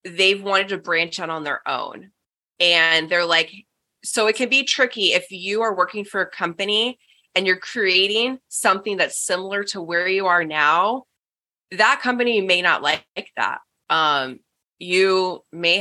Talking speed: 165 wpm